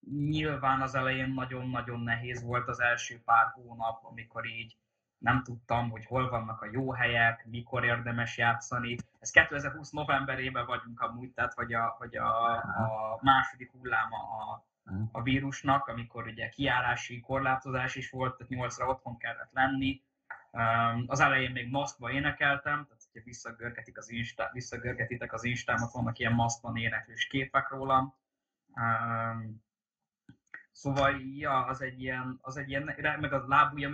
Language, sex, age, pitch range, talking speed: Hungarian, male, 20-39, 115-135 Hz, 135 wpm